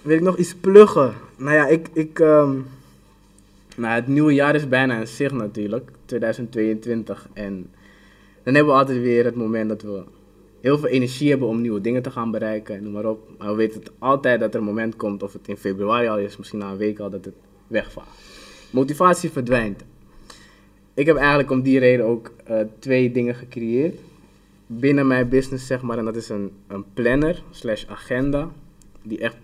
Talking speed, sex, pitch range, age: 185 wpm, male, 100-130 Hz, 20-39